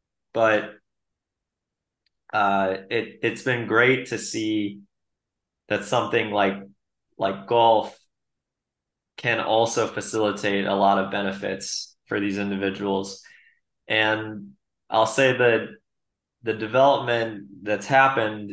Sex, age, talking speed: male, 20-39, 100 wpm